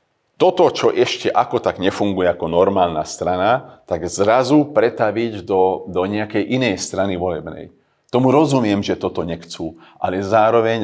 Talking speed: 140 wpm